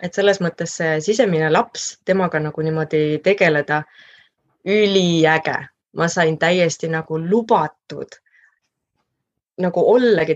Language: English